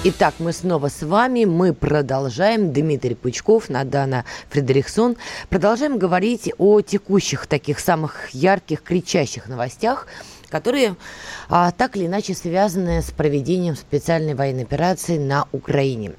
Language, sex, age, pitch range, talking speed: Russian, female, 20-39, 135-190 Hz, 120 wpm